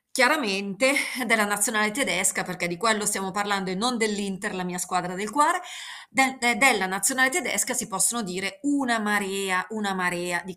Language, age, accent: Italian, 30-49, native